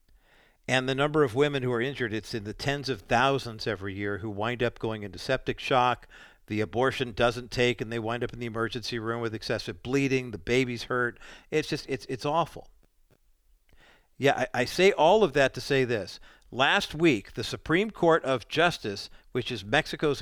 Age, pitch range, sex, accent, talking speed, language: 50-69, 120-155 Hz, male, American, 195 wpm, English